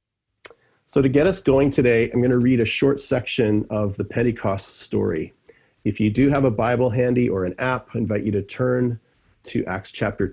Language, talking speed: English, 205 wpm